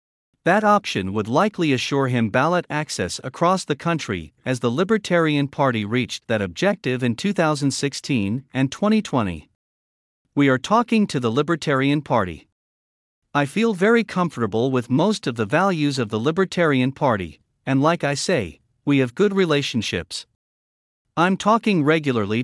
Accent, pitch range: American, 115-170 Hz